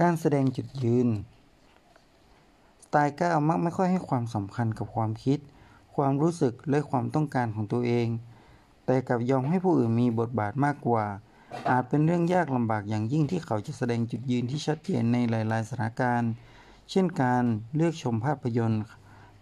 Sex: male